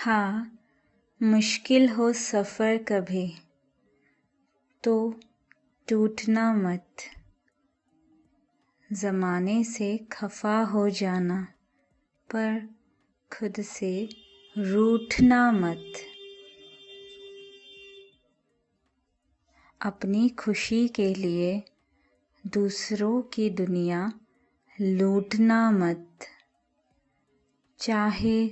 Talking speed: 60 wpm